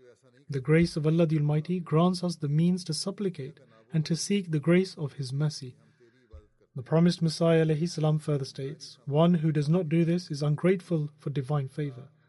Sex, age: male, 30-49